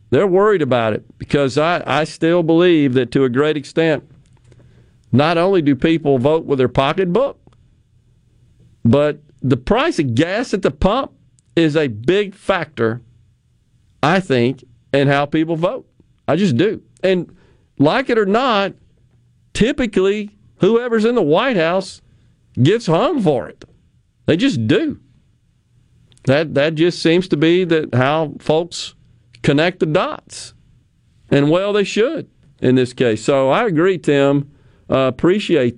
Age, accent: 50-69, American